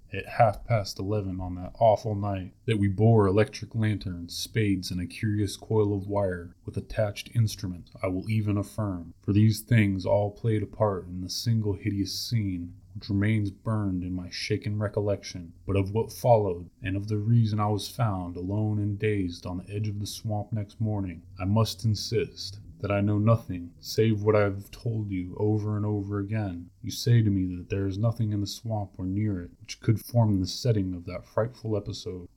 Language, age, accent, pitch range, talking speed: English, 20-39, American, 95-110 Hz, 200 wpm